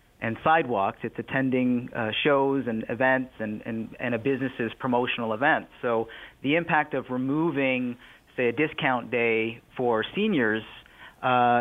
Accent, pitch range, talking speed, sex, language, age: American, 115-140 Hz, 150 wpm, male, English, 30-49